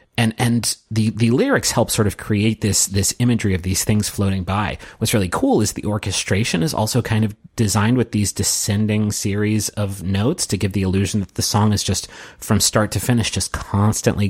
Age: 30-49